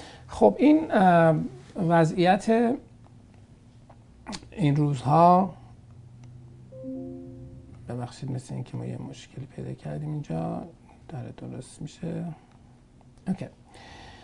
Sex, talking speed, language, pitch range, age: male, 75 wpm, Persian, 115-140 Hz, 50-69